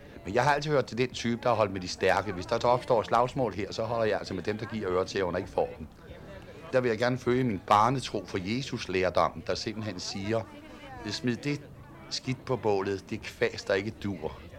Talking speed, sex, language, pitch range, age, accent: 220 wpm, male, Danish, 95-115 Hz, 60-79, native